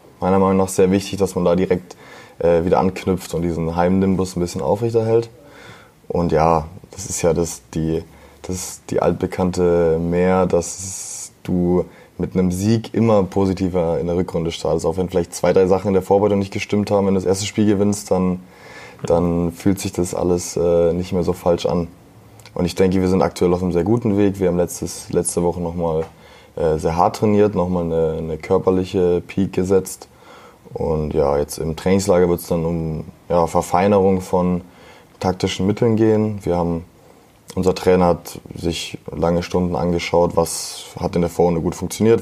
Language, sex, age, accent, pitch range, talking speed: German, male, 20-39, German, 85-100 Hz, 175 wpm